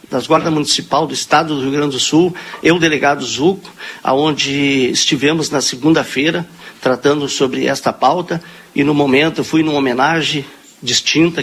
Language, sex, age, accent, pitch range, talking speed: Portuguese, male, 50-69, Brazilian, 145-180 Hz, 145 wpm